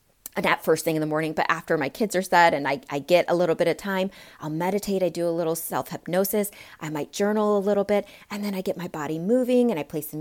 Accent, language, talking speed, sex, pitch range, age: American, English, 265 wpm, female, 160-220 Hz, 30-49